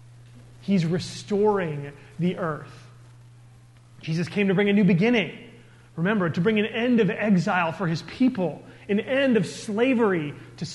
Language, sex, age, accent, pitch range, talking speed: English, male, 30-49, American, 130-195 Hz, 145 wpm